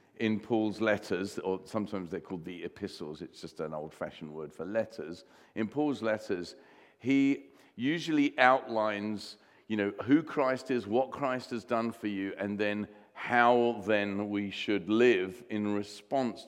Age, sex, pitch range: 50-69, male, 105-130 Hz